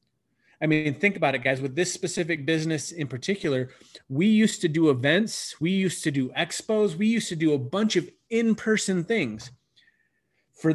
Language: English